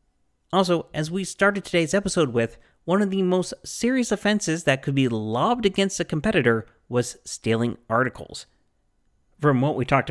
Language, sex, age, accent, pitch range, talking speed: English, male, 30-49, American, 110-145 Hz, 160 wpm